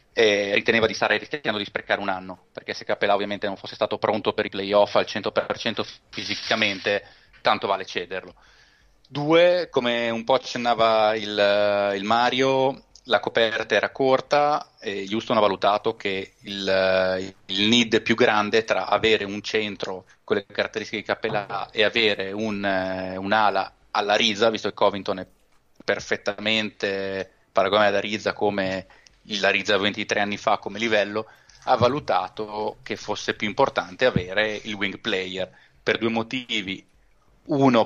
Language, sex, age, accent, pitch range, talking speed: Italian, male, 30-49, native, 95-115 Hz, 145 wpm